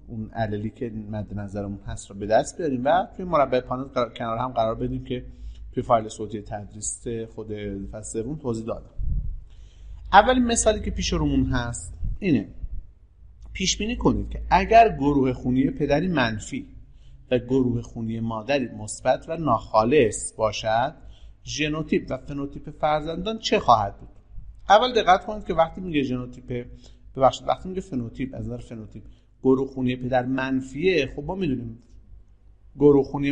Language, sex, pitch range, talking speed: Persian, male, 110-140 Hz, 140 wpm